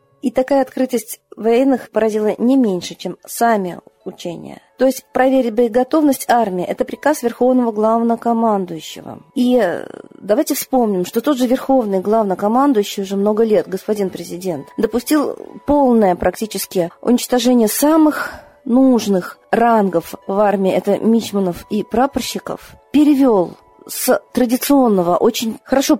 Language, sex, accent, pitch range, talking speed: Russian, female, native, 195-250 Hz, 115 wpm